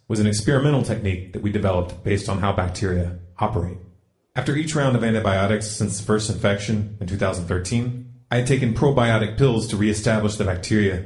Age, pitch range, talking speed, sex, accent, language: 30-49, 100-120 Hz, 175 wpm, male, American, English